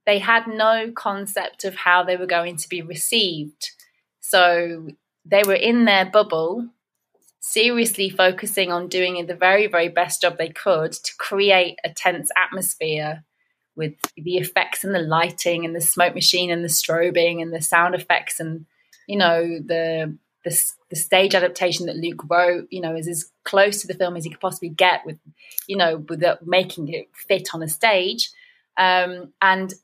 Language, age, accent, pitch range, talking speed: English, 20-39, British, 175-215 Hz, 175 wpm